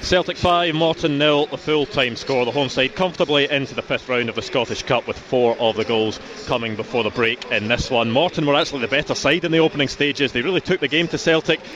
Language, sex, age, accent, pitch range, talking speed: English, male, 30-49, British, 125-150 Hz, 250 wpm